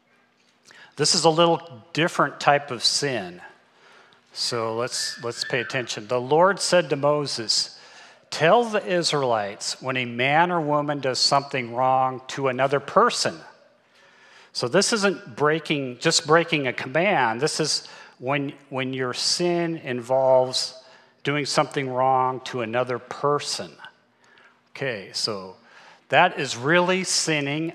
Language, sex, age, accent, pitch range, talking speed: English, male, 40-59, American, 125-160 Hz, 130 wpm